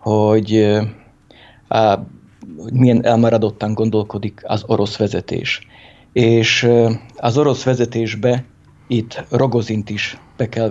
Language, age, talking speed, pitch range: Hungarian, 50-69, 90 wpm, 105-115 Hz